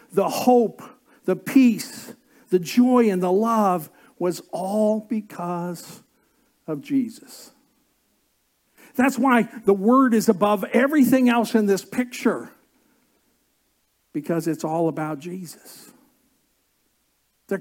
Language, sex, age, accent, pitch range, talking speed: English, male, 60-79, American, 155-255 Hz, 105 wpm